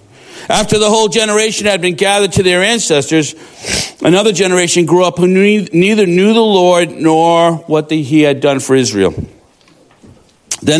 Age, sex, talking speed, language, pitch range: 50-69, male, 150 wpm, English, 145-190 Hz